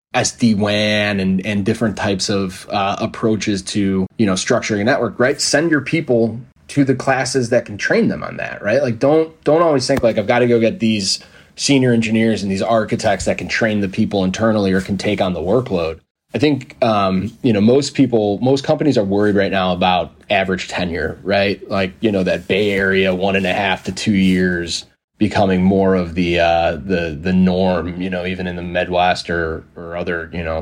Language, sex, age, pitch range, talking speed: English, male, 20-39, 95-115 Hz, 210 wpm